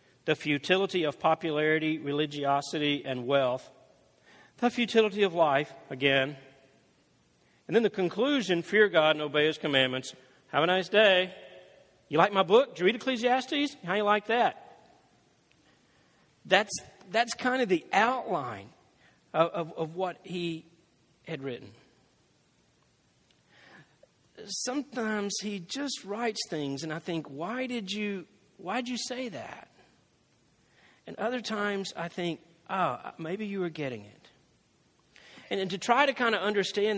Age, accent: 50-69, American